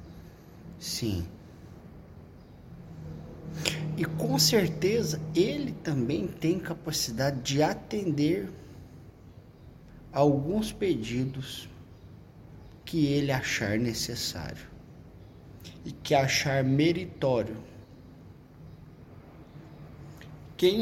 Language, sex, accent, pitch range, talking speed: Portuguese, male, Brazilian, 100-155 Hz, 60 wpm